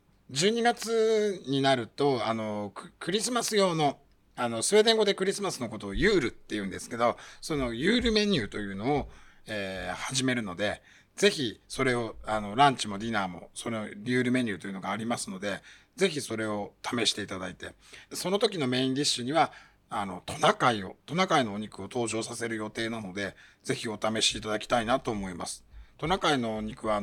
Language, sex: Japanese, male